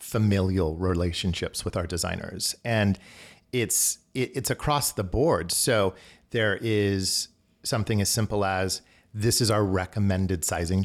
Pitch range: 95-110 Hz